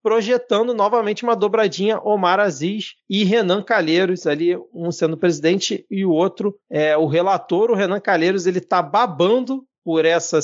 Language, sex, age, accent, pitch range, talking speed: Portuguese, male, 40-59, Brazilian, 175-230 Hz, 155 wpm